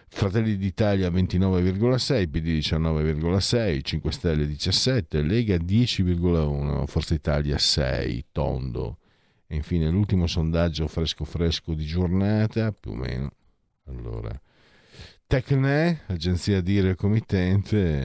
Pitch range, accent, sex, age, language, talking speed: 80-95 Hz, native, male, 50-69, Italian, 100 wpm